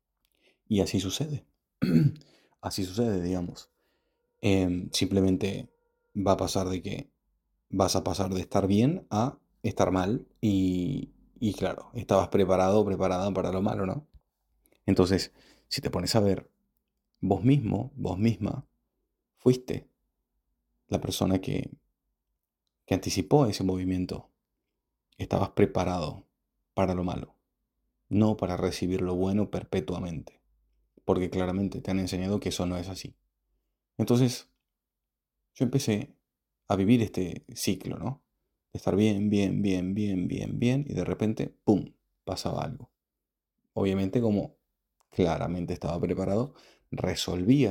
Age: 30-49